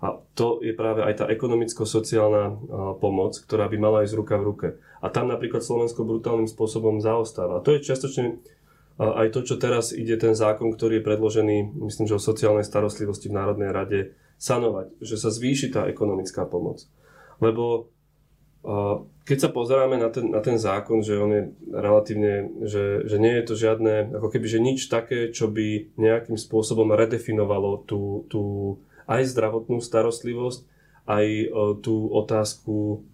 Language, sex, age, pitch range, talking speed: Slovak, male, 20-39, 110-125 Hz, 160 wpm